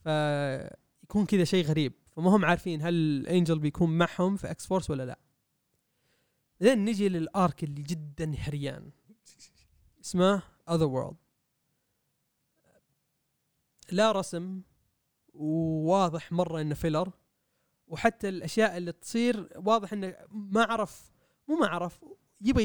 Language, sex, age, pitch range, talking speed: Arabic, male, 20-39, 150-185 Hz, 115 wpm